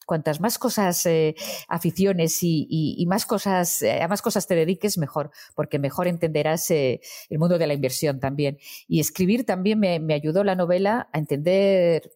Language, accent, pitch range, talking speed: Spanish, Spanish, 155-195 Hz, 185 wpm